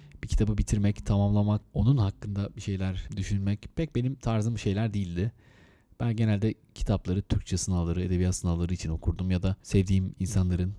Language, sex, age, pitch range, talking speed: Turkish, male, 30-49, 95-120 Hz, 150 wpm